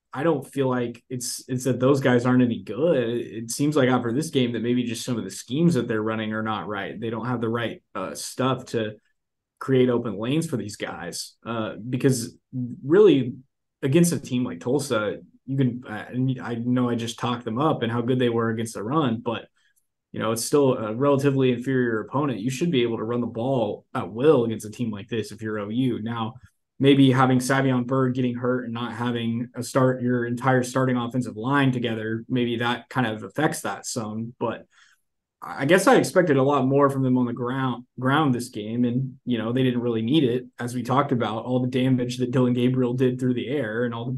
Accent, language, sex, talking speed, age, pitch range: American, English, male, 225 wpm, 20-39, 120-130 Hz